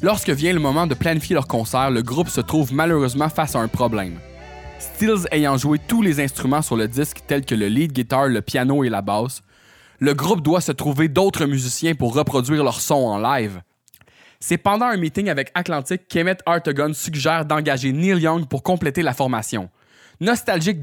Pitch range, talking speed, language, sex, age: 130-175 Hz, 190 wpm, French, male, 20-39